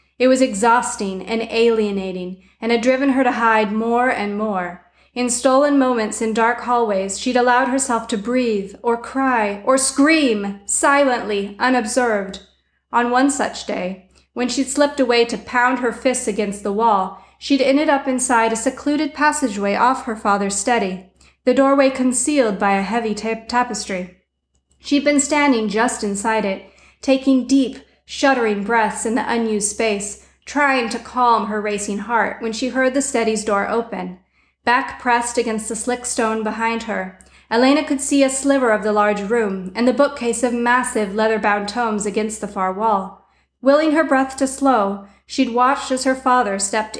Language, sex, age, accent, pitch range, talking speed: English, female, 30-49, American, 210-255 Hz, 165 wpm